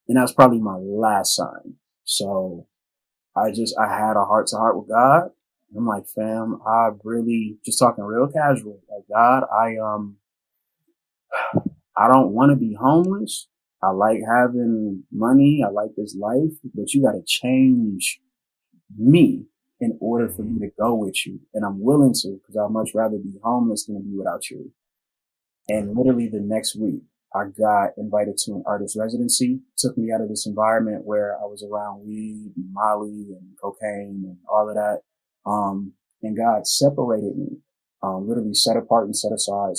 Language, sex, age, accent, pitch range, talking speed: English, male, 20-39, American, 105-120 Hz, 175 wpm